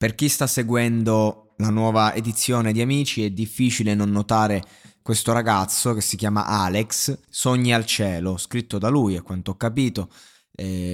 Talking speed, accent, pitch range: 165 wpm, native, 100-130 Hz